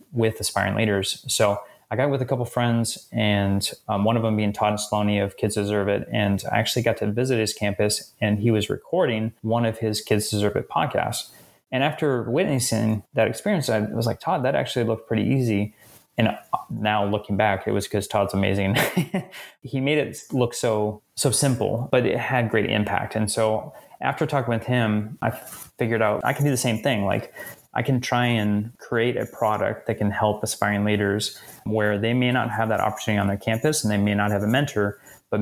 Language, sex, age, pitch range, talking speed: English, male, 20-39, 105-120 Hz, 205 wpm